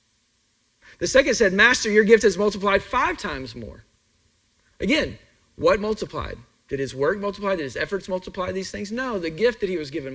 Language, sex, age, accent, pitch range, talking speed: English, male, 40-59, American, 150-225 Hz, 185 wpm